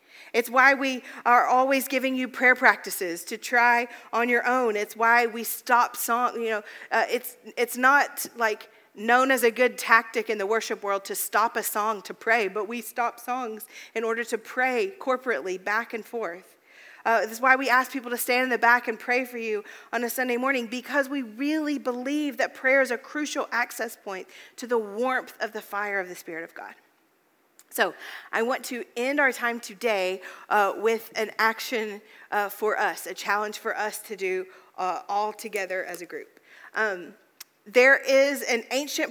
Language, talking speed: English, 195 wpm